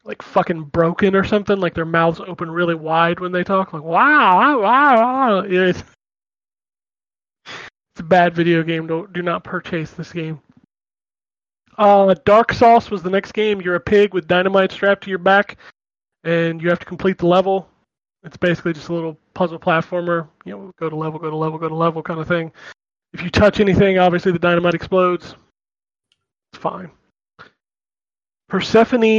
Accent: American